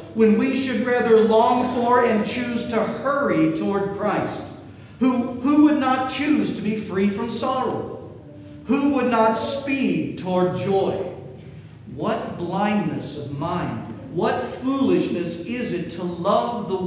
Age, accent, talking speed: 50-69, American, 140 wpm